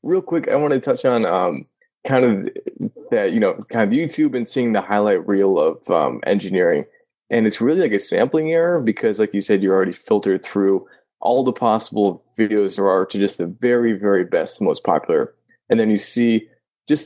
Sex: male